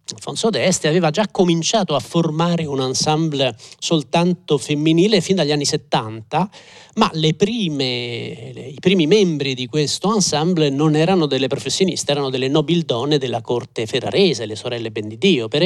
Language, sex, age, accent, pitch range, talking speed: Italian, male, 40-59, native, 135-180 Hz, 145 wpm